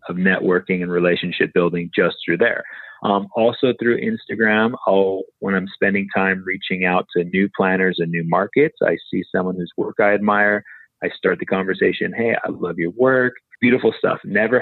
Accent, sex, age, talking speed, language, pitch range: American, male, 30-49, 180 wpm, English, 95-120 Hz